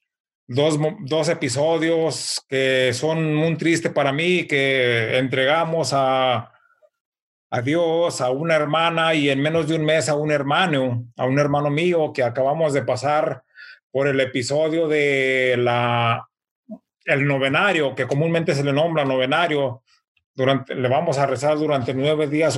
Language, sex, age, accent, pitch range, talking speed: English, male, 40-59, Mexican, 130-160 Hz, 145 wpm